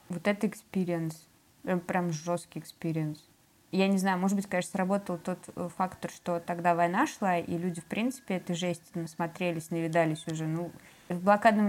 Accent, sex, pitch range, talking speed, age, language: native, female, 170-210 Hz, 160 wpm, 20-39, Russian